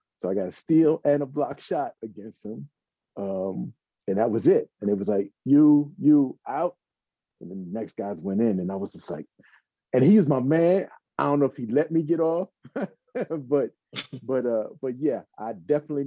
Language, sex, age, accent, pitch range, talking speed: English, male, 30-49, American, 105-145 Hz, 205 wpm